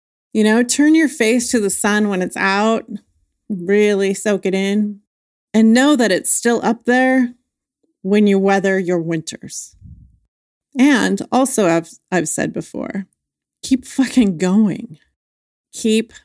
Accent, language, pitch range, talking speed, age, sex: American, English, 185-235 Hz, 135 wpm, 30-49, female